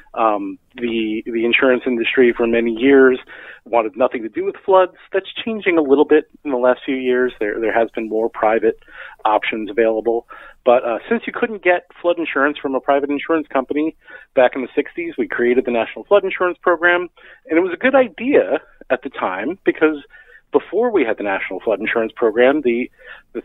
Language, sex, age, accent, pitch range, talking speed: English, male, 40-59, American, 120-160 Hz, 195 wpm